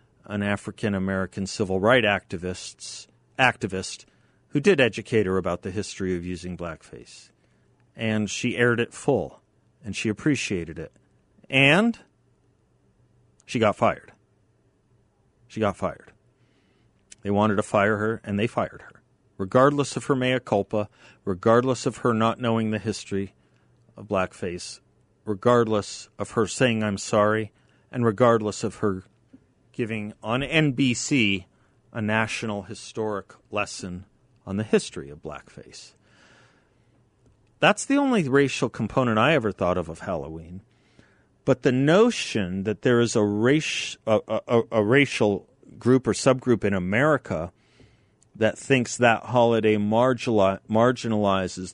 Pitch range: 100-125 Hz